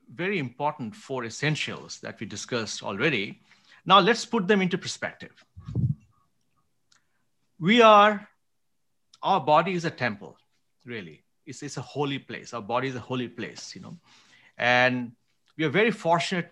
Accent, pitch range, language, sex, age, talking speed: Indian, 130-175 Hz, English, male, 50-69, 145 wpm